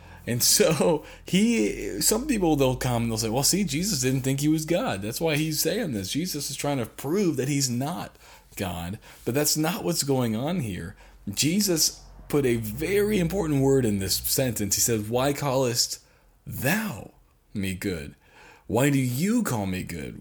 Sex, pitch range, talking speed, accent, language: male, 105-150 Hz, 180 wpm, American, English